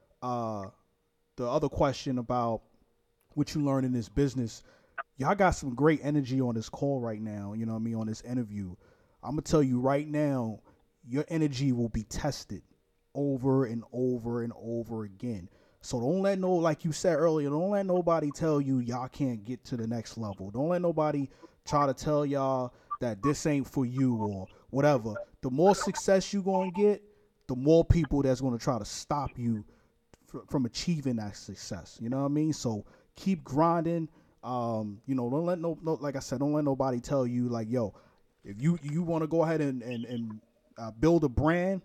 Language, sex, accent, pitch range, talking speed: English, male, American, 120-155 Hz, 200 wpm